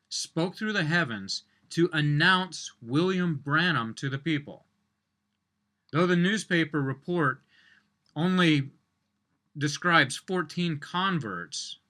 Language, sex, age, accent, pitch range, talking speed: English, male, 30-49, American, 120-170 Hz, 95 wpm